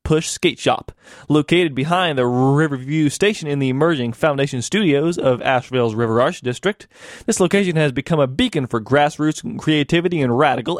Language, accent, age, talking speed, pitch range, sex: English, American, 20-39, 160 wpm, 125-165 Hz, male